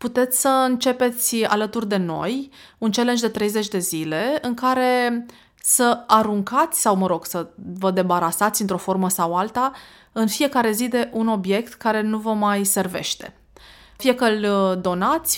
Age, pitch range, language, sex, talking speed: 20-39, 185-235 Hz, Romanian, female, 160 wpm